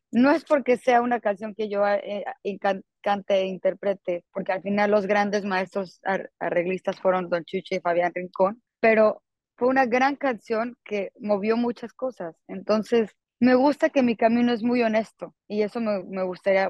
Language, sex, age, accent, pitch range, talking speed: Spanish, female, 20-39, Mexican, 185-225 Hz, 170 wpm